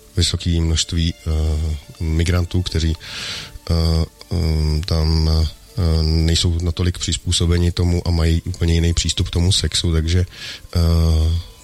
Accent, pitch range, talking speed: native, 80-95 Hz, 120 wpm